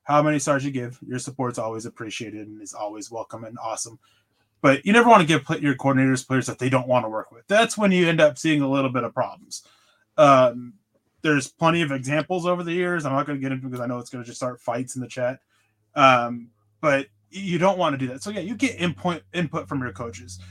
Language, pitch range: English, 125-155 Hz